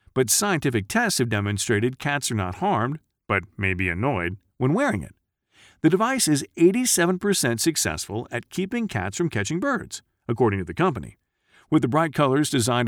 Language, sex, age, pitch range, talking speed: English, male, 40-59, 100-145 Hz, 170 wpm